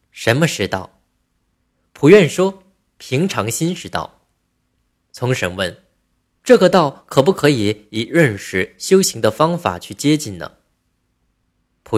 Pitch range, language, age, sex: 100-165 Hz, Chinese, 20-39, male